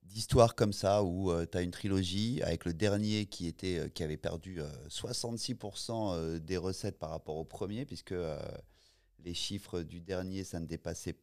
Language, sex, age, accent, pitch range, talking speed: French, male, 30-49, French, 90-115 Hz, 190 wpm